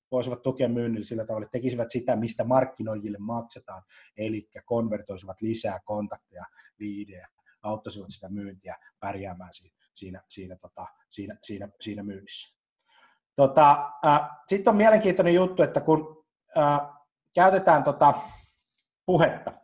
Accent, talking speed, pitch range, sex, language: native, 115 wpm, 110-155 Hz, male, Finnish